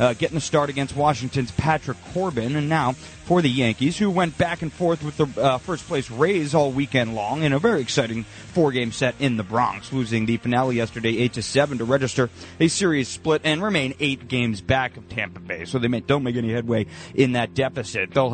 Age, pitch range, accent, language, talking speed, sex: 30-49, 115-145 Hz, American, English, 210 wpm, male